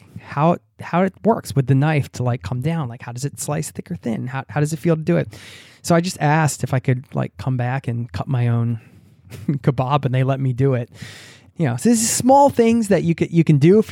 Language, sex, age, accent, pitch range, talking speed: English, male, 20-39, American, 125-160 Hz, 265 wpm